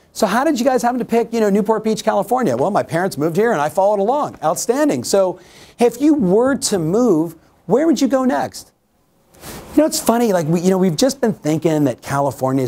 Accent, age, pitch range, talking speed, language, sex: American, 40-59, 135-205 Hz, 225 wpm, English, male